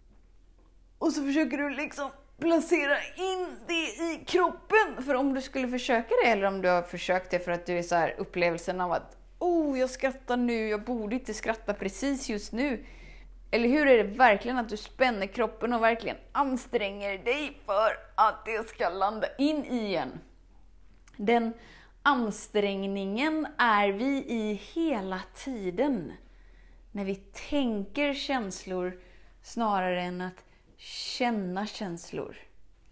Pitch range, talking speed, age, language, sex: 205-280 Hz, 145 wpm, 30-49, Swedish, female